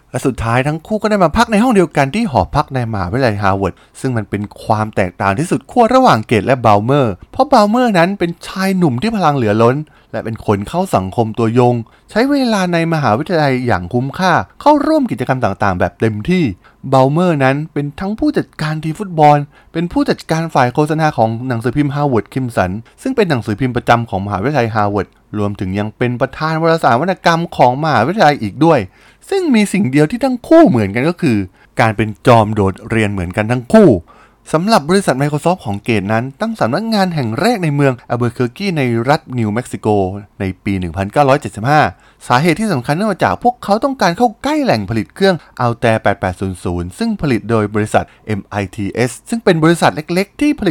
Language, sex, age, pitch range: Thai, male, 20-39, 110-180 Hz